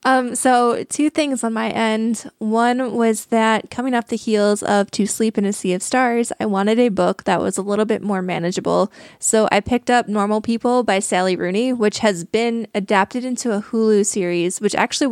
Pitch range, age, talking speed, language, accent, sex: 200-240 Hz, 20-39, 205 wpm, English, American, female